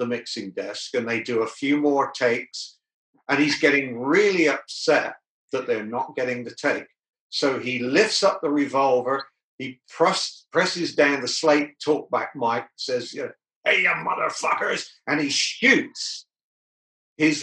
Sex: male